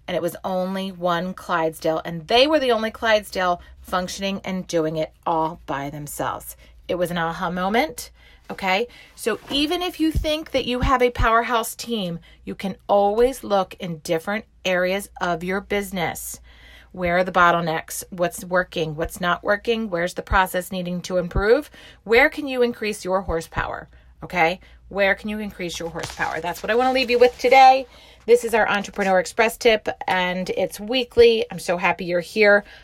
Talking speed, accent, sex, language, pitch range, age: 175 wpm, American, female, English, 180-235 Hz, 30-49